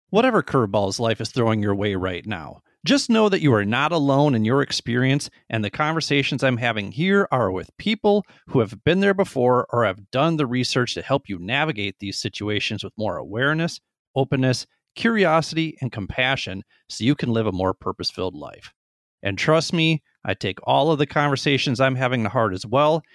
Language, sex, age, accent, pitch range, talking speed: English, male, 30-49, American, 110-150 Hz, 190 wpm